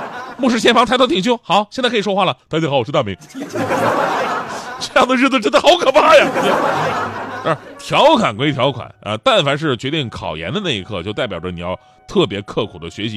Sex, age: male, 20-39